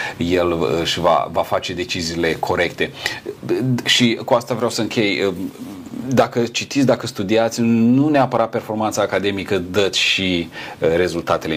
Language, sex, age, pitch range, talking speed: Romanian, male, 40-59, 90-120 Hz, 125 wpm